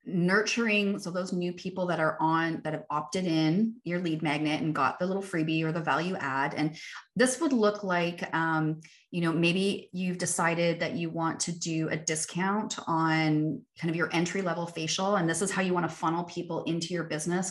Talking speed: 210 wpm